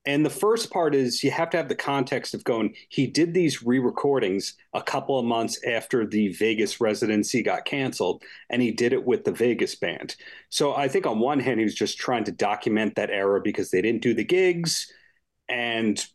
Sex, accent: male, American